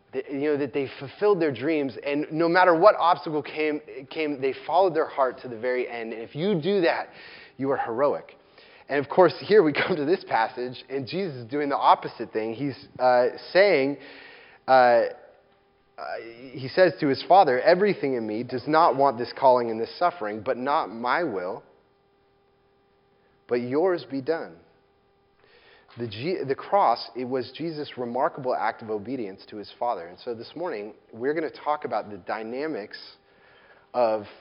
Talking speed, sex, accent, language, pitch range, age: 175 wpm, male, American, English, 125-160 Hz, 30-49